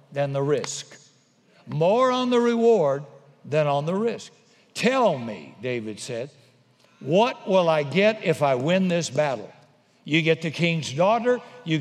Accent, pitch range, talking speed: American, 150-200 Hz, 150 wpm